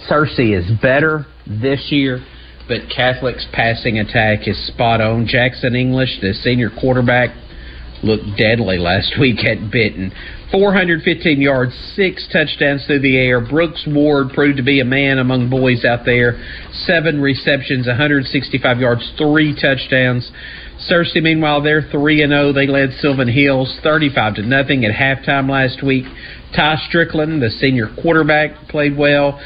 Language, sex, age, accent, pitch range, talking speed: English, male, 50-69, American, 120-145 Hz, 140 wpm